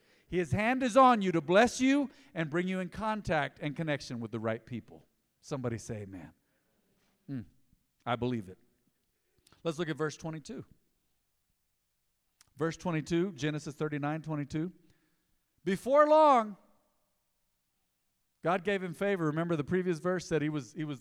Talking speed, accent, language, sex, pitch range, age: 145 wpm, American, English, male, 125-185 Hz, 50-69